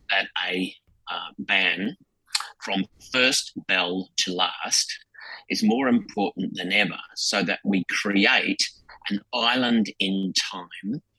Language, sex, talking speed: English, male, 115 wpm